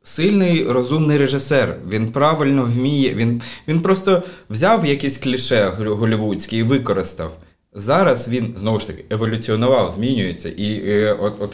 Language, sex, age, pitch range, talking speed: Ukrainian, male, 20-39, 95-115 Hz, 135 wpm